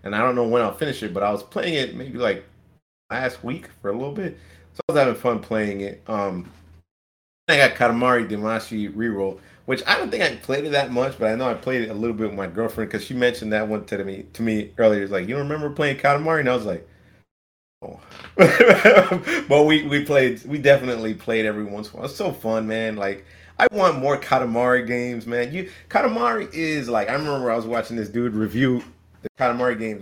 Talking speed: 230 wpm